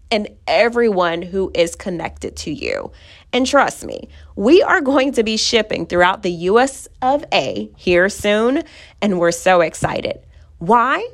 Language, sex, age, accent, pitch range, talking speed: English, female, 30-49, American, 185-310 Hz, 150 wpm